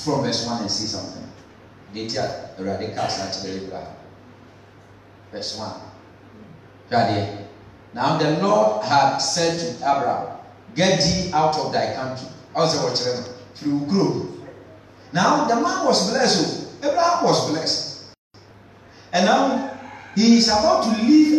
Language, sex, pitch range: English, male, 105-165 Hz